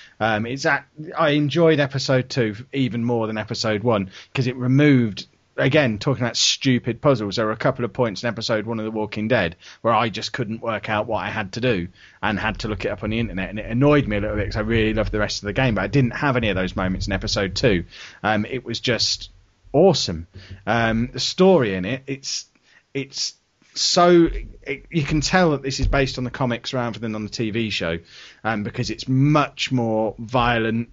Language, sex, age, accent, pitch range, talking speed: English, male, 30-49, British, 105-140 Hz, 225 wpm